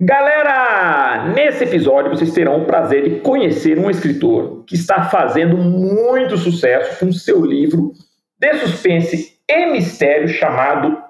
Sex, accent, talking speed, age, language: male, Brazilian, 130 wpm, 50-69, Portuguese